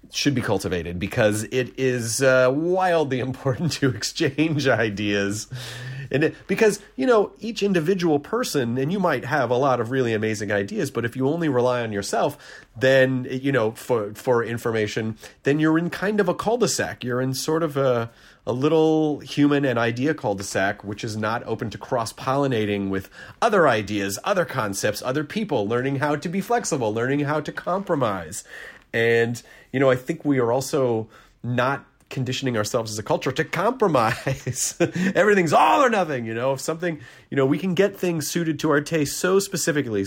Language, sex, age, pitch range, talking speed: English, male, 30-49, 115-160 Hz, 180 wpm